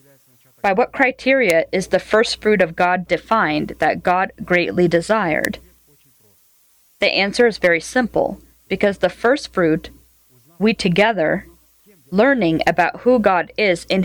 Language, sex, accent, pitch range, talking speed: English, female, American, 160-210 Hz, 130 wpm